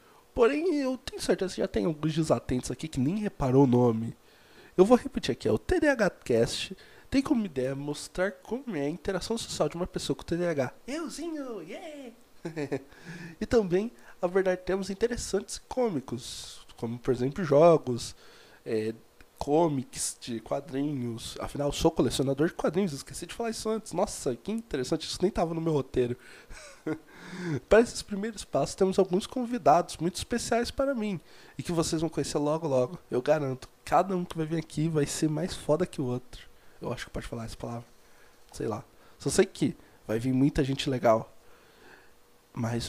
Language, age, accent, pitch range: Portuguese, 20-39, Brazilian, 135-200 Hz